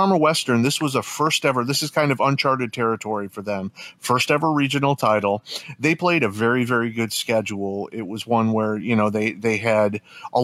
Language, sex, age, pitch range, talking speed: English, male, 30-49, 110-130 Hz, 200 wpm